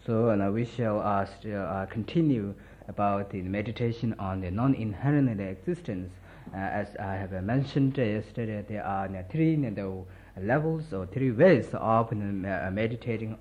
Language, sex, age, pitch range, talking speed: Italian, male, 50-69, 95-125 Hz, 155 wpm